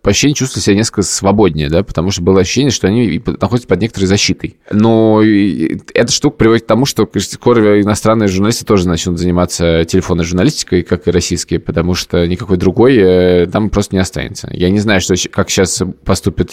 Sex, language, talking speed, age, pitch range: male, Russian, 180 wpm, 20-39, 95-115 Hz